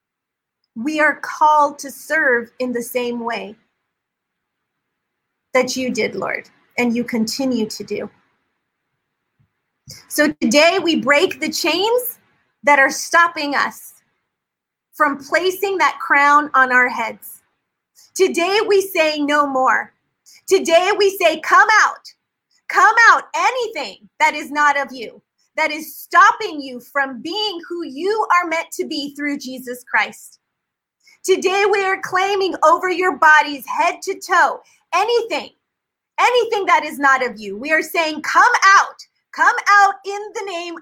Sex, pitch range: female, 275-385 Hz